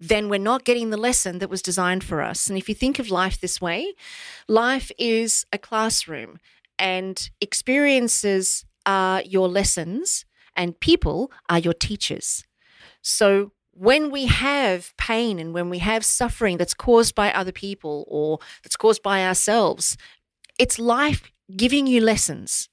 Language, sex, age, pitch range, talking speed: English, female, 40-59, 175-230 Hz, 155 wpm